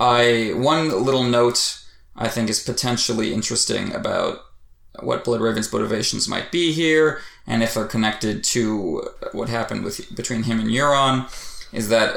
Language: English